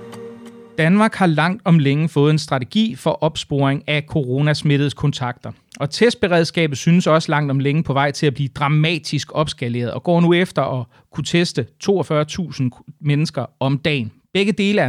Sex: male